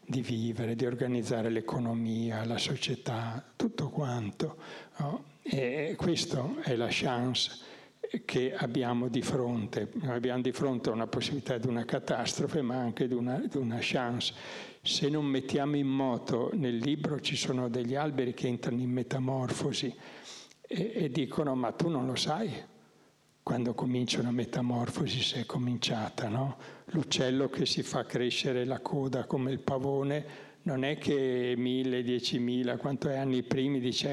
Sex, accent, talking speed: male, native, 145 wpm